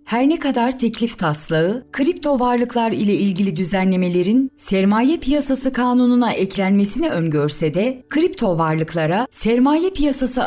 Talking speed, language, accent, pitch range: 115 wpm, Turkish, native, 190-265 Hz